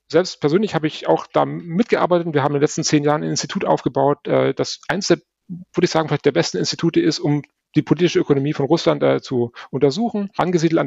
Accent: German